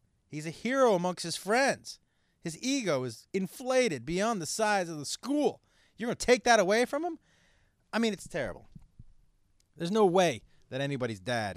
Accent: American